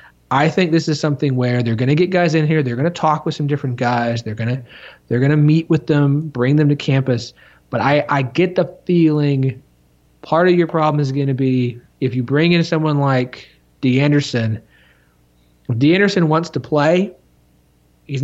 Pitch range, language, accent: 115-155 Hz, English, American